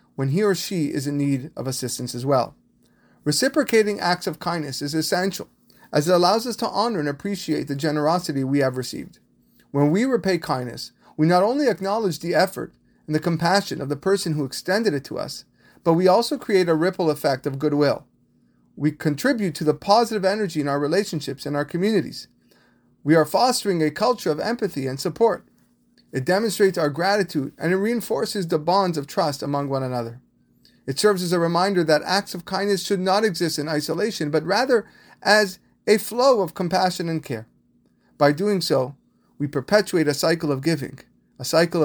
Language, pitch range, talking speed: English, 145-195 Hz, 185 wpm